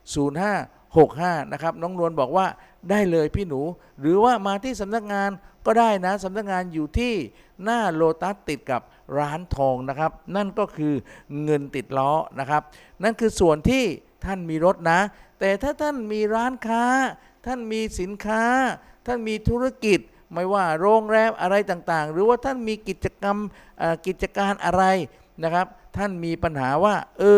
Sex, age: male, 50-69